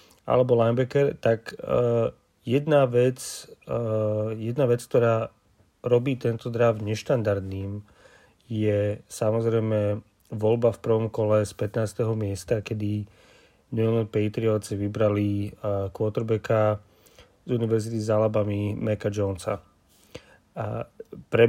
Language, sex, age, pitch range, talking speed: Slovak, male, 30-49, 105-120 Hz, 105 wpm